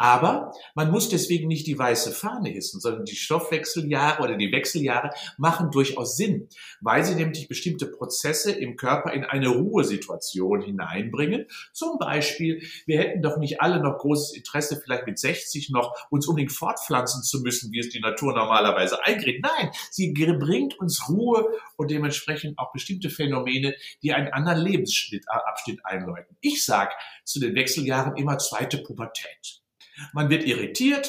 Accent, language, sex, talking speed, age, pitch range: German, German, male, 155 wpm, 50-69, 135-170 Hz